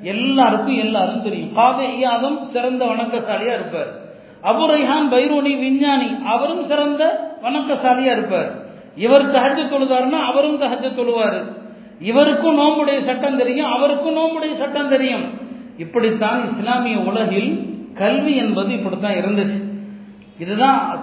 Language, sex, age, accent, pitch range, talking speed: Tamil, male, 50-69, native, 220-270 Hz, 45 wpm